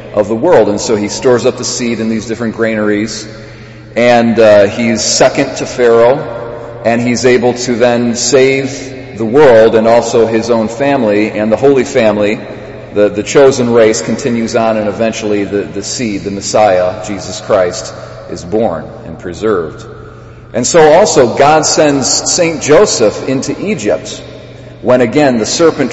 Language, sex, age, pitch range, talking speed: English, male, 40-59, 110-130 Hz, 160 wpm